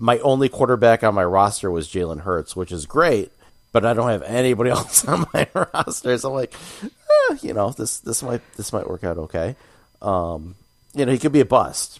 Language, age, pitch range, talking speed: English, 30-49, 90-120 Hz, 215 wpm